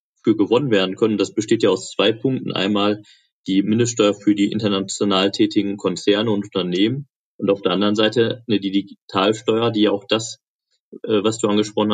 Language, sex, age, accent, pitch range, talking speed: German, male, 30-49, German, 100-110 Hz, 165 wpm